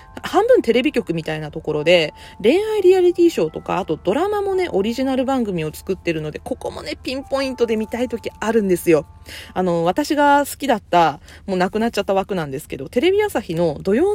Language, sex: Japanese, female